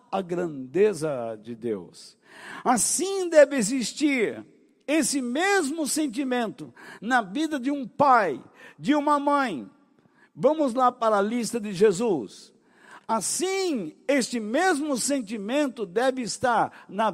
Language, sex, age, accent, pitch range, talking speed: Portuguese, male, 60-79, Brazilian, 220-285 Hz, 110 wpm